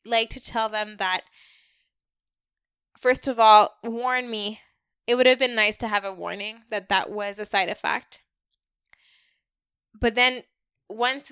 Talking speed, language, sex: 150 wpm, English, female